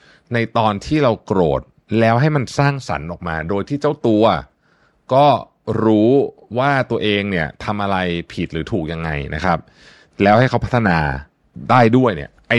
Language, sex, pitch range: Thai, male, 85-115 Hz